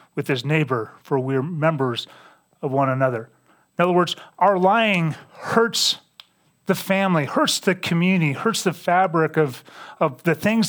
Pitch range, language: 150-185 Hz, English